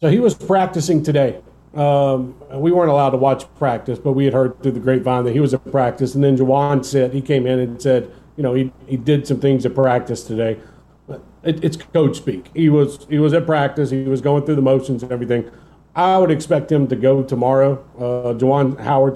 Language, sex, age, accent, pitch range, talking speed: English, male, 40-59, American, 130-150 Hz, 220 wpm